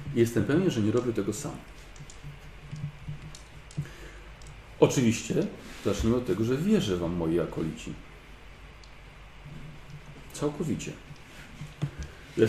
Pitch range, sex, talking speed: 115-150 Hz, male, 80 wpm